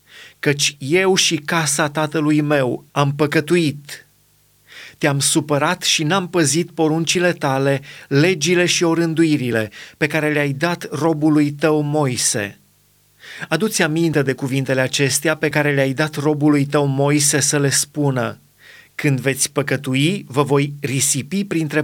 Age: 30-49